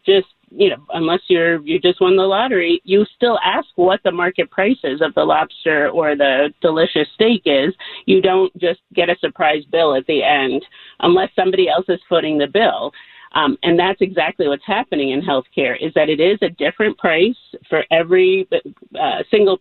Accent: American